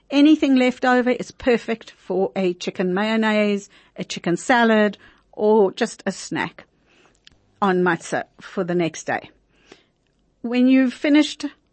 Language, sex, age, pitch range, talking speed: English, female, 50-69, 195-255 Hz, 130 wpm